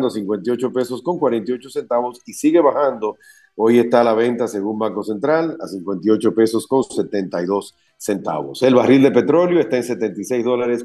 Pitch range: 110-140 Hz